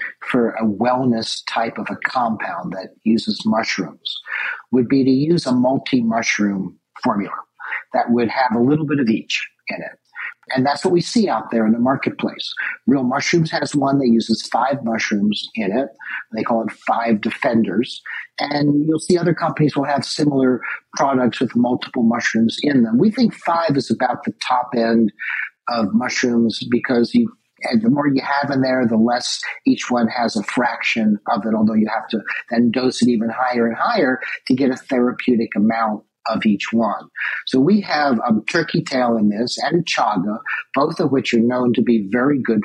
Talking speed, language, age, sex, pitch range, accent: 185 wpm, English, 50-69, male, 115-145 Hz, American